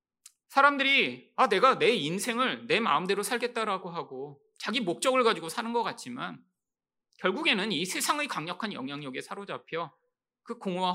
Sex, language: male, Korean